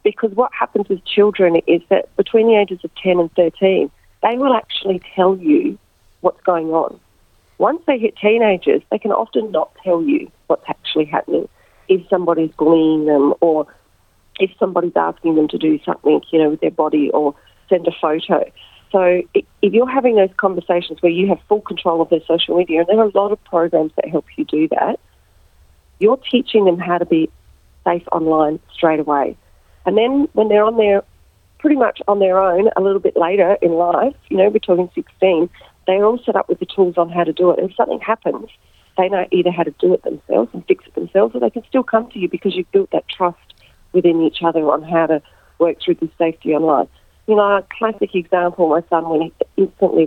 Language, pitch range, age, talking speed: English, 165-205 Hz, 40-59, 210 wpm